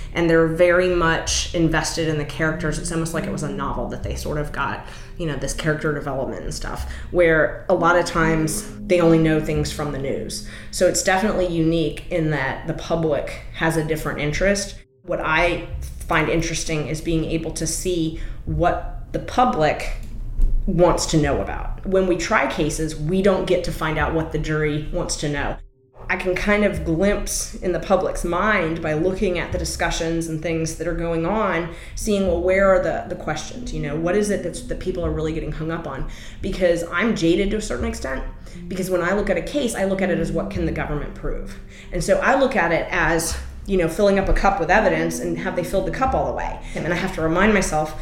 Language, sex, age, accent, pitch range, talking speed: English, female, 20-39, American, 155-180 Hz, 225 wpm